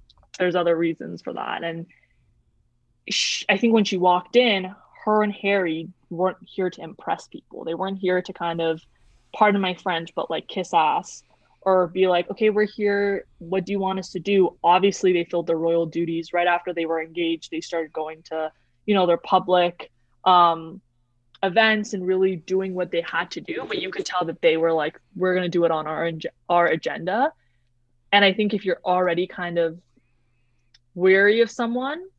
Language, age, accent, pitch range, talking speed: English, 20-39, American, 165-195 Hz, 190 wpm